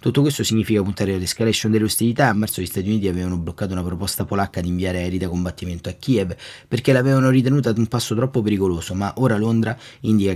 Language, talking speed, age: Italian, 210 wpm, 30-49